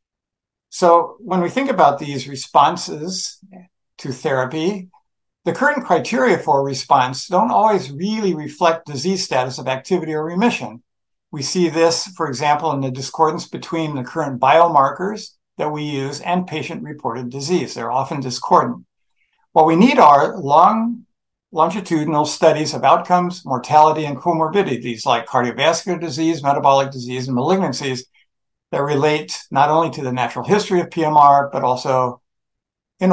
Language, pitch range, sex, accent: English, 135-180 Hz, male, American